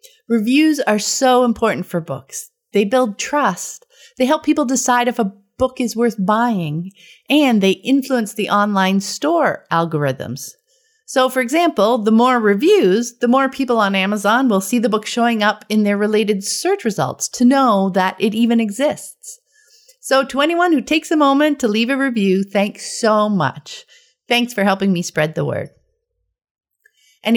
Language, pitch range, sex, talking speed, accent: English, 195-265 Hz, female, 165 wpm, American